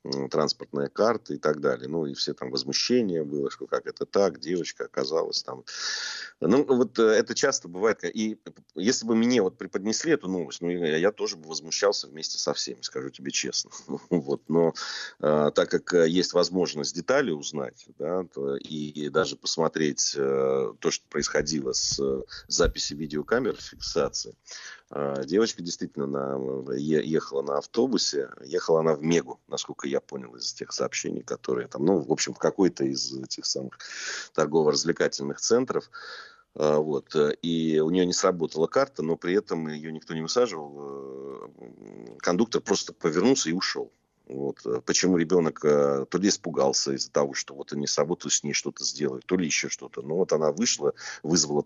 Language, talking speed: Russian, 150 wpm